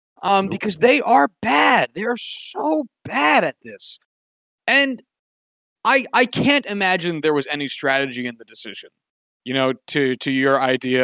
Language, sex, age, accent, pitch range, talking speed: English, male, 20-39, American, 145-210 Hz, 160 wpm